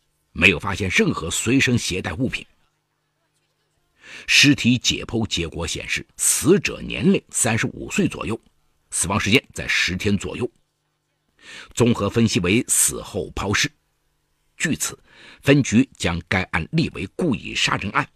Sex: male